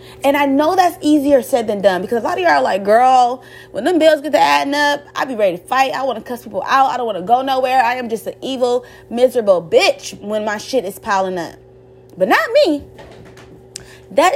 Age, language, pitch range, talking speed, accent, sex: 30-49, English, 200-285 Hz, 240 wpm, American, female